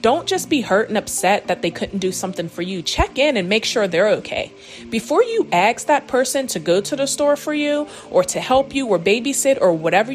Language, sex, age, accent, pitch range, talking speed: English, female, 30-49, American, 165-230 Hz, 235 wpm